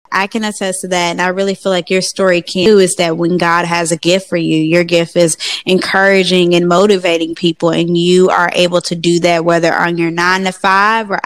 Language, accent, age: English, American, 10-29